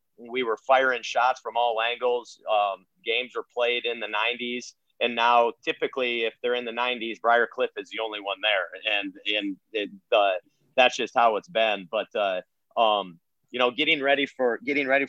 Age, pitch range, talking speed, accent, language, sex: 40-59, 110-130 Hz, 190 wpm, American, English, male